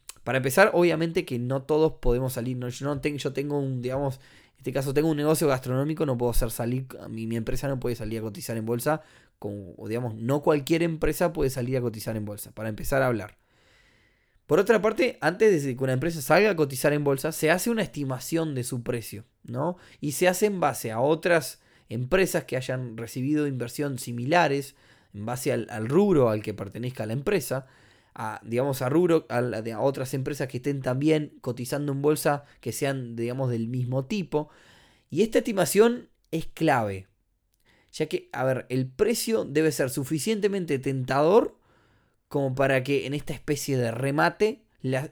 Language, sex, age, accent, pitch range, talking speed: Spanish, male, 20-39, Argentinian, 120-155 Hz, 185 wpm